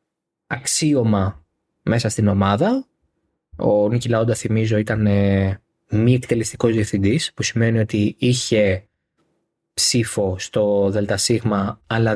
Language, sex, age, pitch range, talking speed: Greek, male, 20-39, 105-160 Hz, 100 wpm